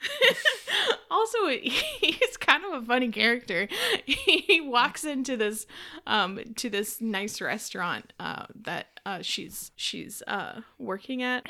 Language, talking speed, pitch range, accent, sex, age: English, 125 wpm, 210-260 Hz, American, female, 20-39